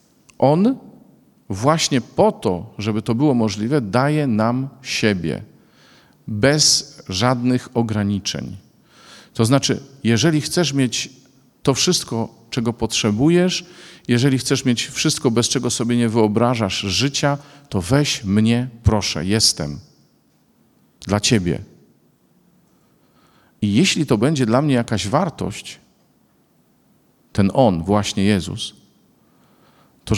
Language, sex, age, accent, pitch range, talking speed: Polish, male, 50-69, native, 105-135 Hz, 105 wpm